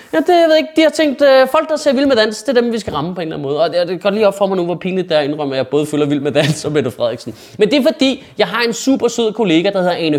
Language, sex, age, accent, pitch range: Danish, male, 20-39, native, 160-230 Hz